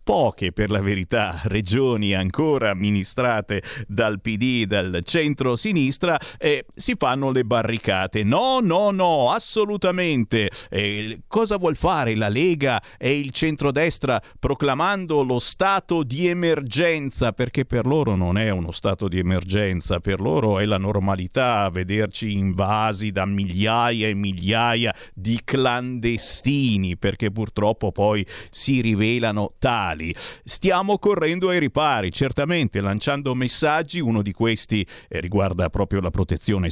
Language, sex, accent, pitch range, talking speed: Italian, male, native, 105-165 Hz, 125 wpm